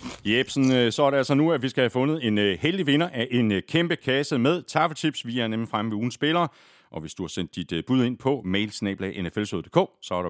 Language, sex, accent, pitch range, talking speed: Danish, male, native, 105-155 Hz, 225 wpm